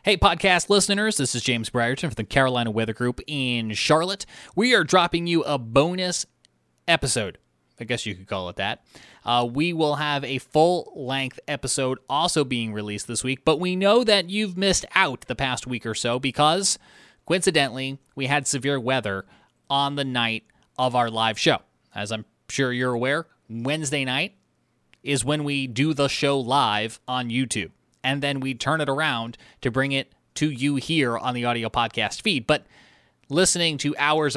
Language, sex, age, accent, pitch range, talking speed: English, male, 20-39, American, 115-150 Hz, 180 wpm